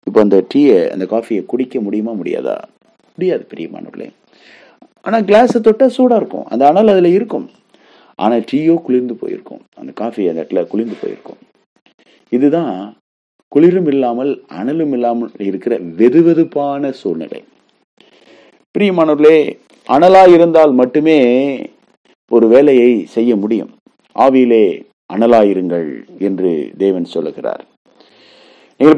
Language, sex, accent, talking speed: English, male, Indian, 90 wpm